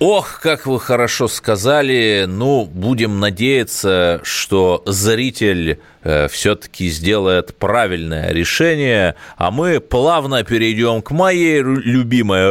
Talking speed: 110 wpm